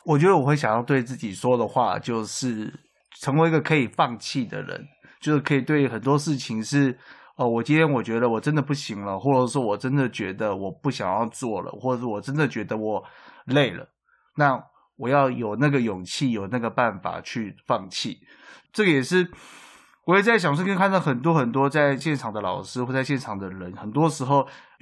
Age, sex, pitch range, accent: 20-39, male, 120-155 Hz, native